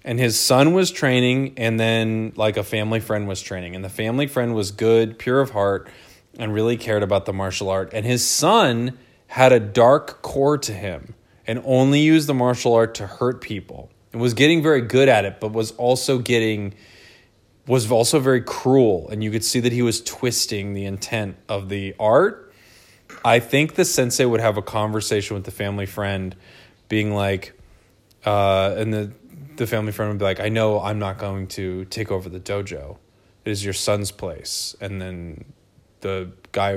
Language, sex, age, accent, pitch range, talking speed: English, male, 20-39, American, 95-120 Hz, 190 wpm